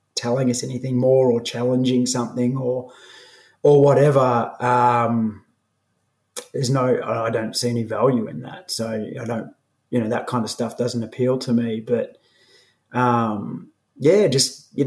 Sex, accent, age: male, Australian, 30-49